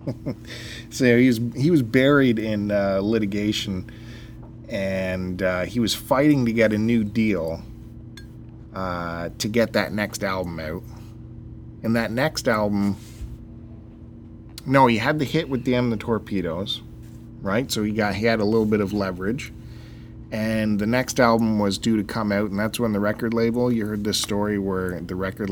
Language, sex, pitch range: English, male, 100-115 Hz